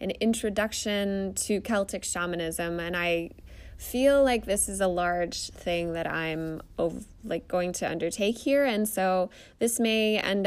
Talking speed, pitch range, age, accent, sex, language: 155 wpm, 175-215 Hz, 20-39, American, female, English